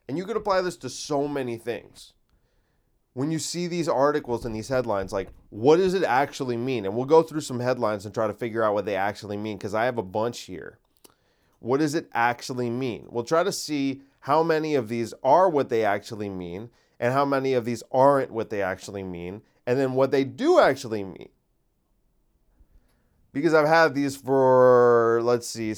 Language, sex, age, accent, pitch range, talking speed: English, male, 30-49, American, 110-150 Hz, 200 wpm